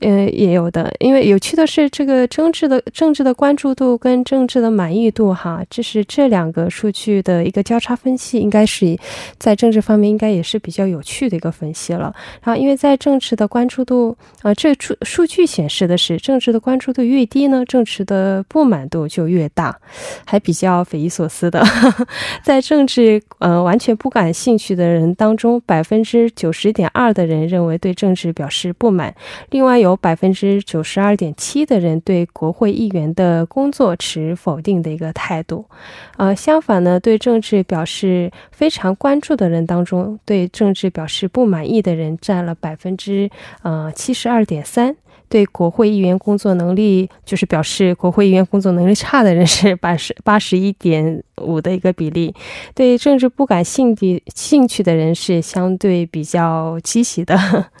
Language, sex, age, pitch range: Korean, female, 10-29, 175-240 Hz